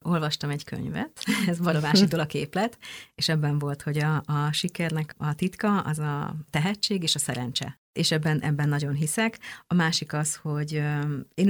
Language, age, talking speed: Hungarian, 30-49, 170 wpm